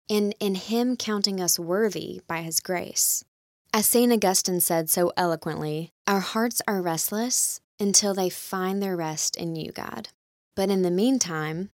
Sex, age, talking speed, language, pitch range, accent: female, 20-39, 160 wpm, English, 170-210 Hz, American